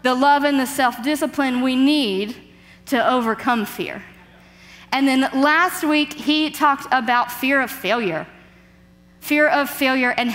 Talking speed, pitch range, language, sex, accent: 140 wpm, 205-280 Hz, English, female, American